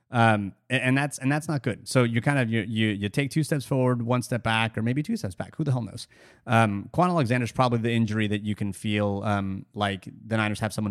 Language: English